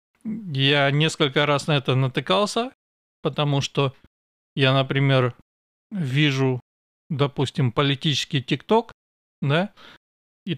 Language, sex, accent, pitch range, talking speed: Russian, male, native, 135-165 Hz, 90 wpm